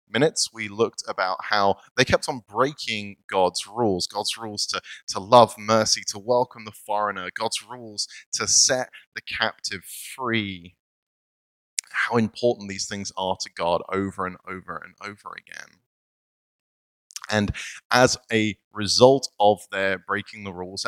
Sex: male